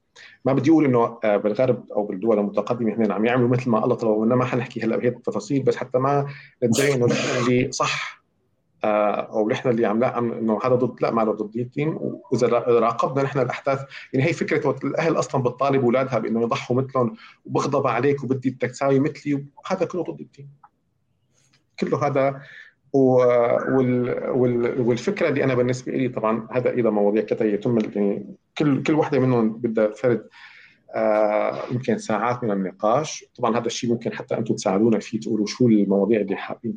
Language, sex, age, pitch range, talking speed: Arabic, male, 40-59, 110-130 Hz, 170 wpm